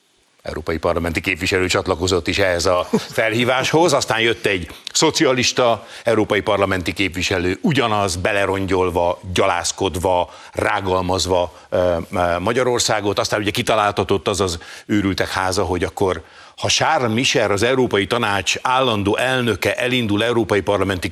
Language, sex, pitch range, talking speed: Hungarian, male, 95-120 Hz, 110 wpm